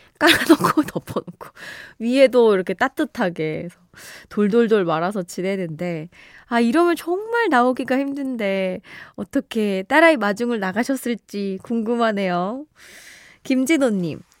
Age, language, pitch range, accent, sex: 20-39, Korean, 185-280 Hz, native, female